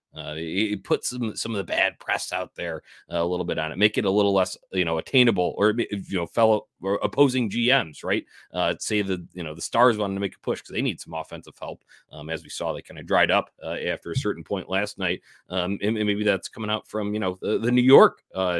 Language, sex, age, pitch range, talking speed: English, male, 30-49, 90-110 Hz, 260 wpm